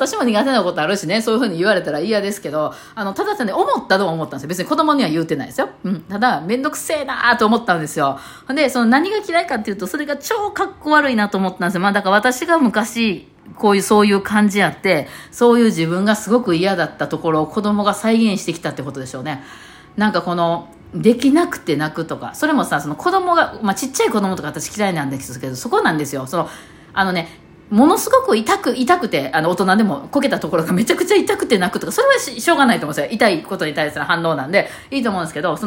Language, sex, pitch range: Japanese, female, 165-265 Hz